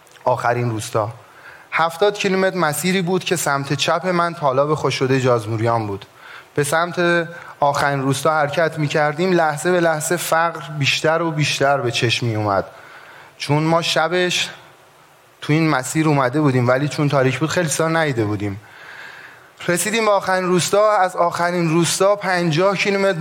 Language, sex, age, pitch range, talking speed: Persian, male, 30-49, 140-175 Hz, 140 wpm